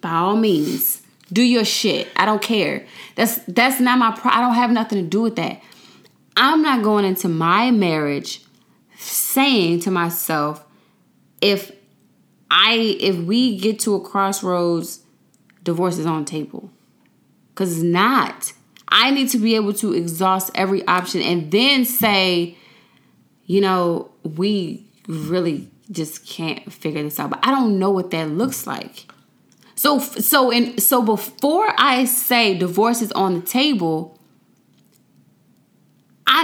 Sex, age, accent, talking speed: female, 20-39, American, 145 wpm